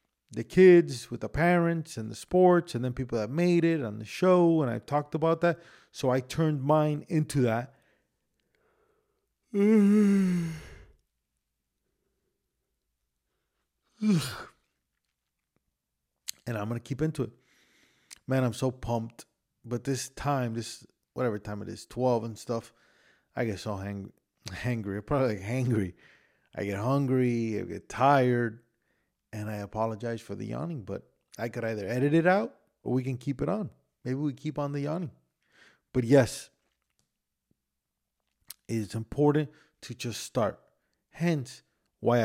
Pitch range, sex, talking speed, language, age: 110-150 Hz, male, 135 wpm, English, 30-49